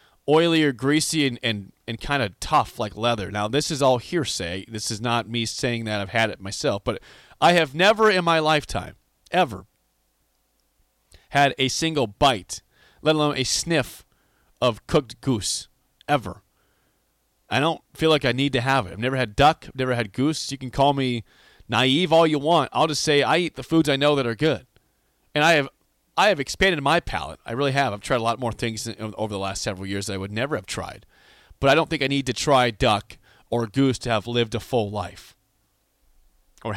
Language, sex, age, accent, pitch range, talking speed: English, male, 30-49, American, 110-150 Hz, 210 wpm